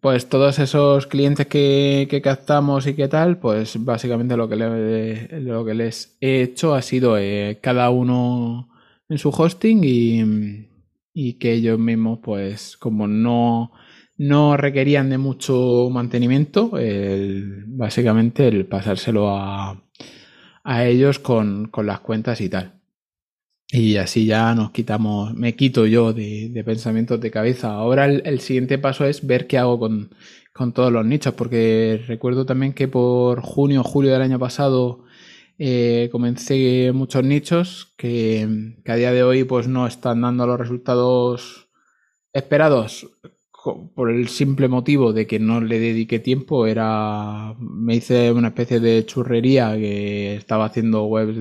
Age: 20-39